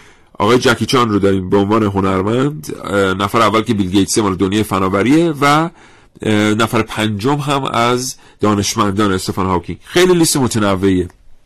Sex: male